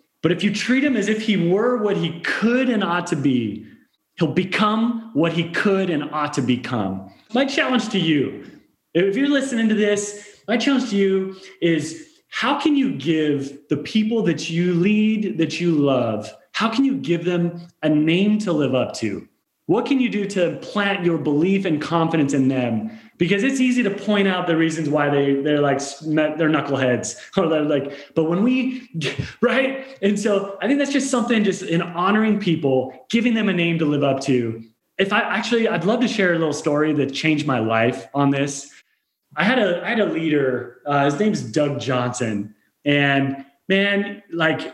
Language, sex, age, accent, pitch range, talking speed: English, male, 30-49, American, 145-210 Hz, 195 wpm